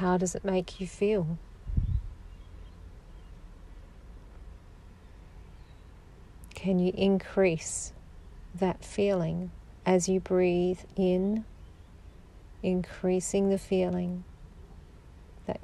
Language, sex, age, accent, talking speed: English, female, 40-59, Australian, 75 wpm